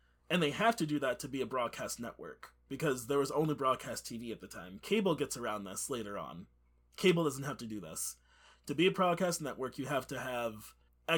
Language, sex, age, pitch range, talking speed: English, male, 30-49, 115-160 Hz, 220 wpm